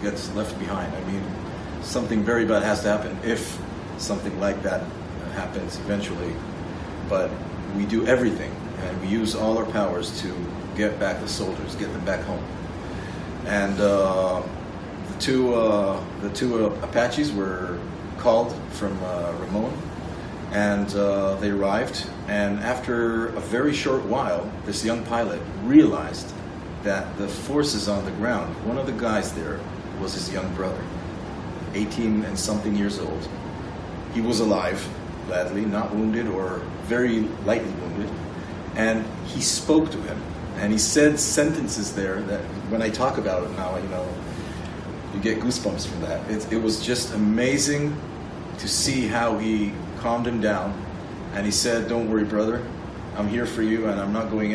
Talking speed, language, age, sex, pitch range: 155 wpm, English, 40-59, male, 95-110 Hz